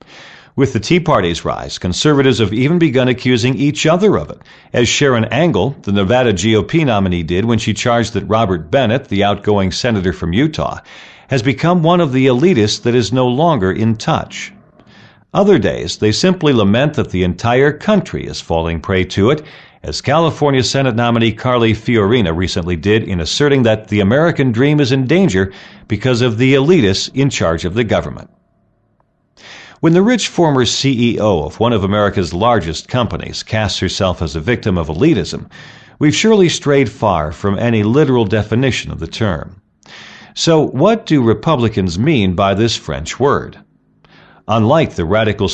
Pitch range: 95-140 Hz